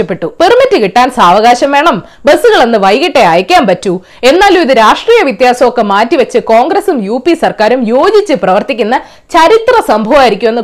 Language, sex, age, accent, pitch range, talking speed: Malayalam, female, 20-39, native, 215-345 Hz, 120 wpm